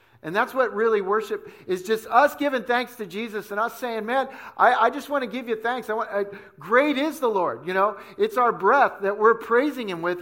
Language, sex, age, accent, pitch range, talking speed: English, male, 50-69, American, 180-230 Hz, 240 wpm